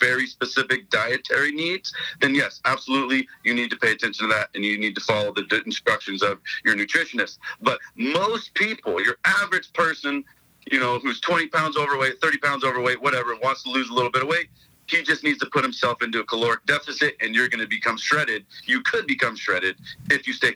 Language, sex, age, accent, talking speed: English, male, 40-59, American, 205 wpm